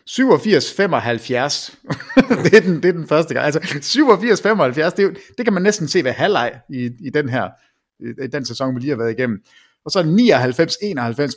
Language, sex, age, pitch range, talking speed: English, male, 30-49, 135-195 Hz, 180 wpm